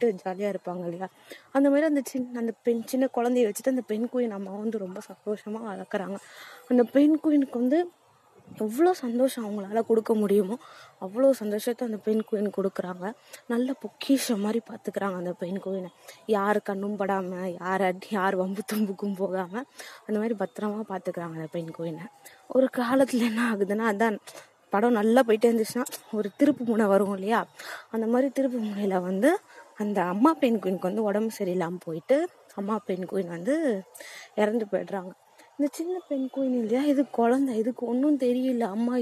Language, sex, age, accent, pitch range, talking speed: Tamil, female, 20-39, native, 200-255 Hz, 95 wpm